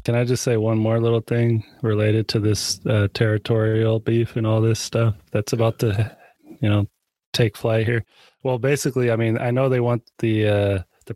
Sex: male